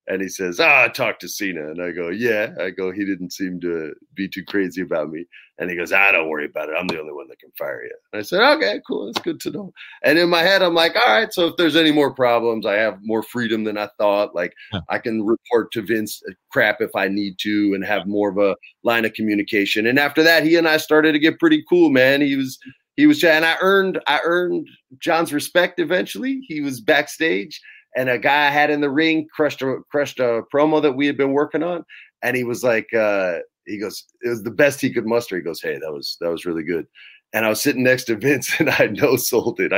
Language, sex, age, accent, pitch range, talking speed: English, male, 30-49, American, 110-165 Hz, 255 wpm